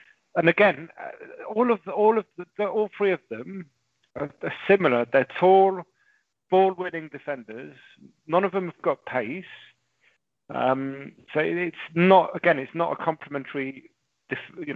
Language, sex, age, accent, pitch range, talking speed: English, male, 40-59, British, 130-175 Hz, 140 wpm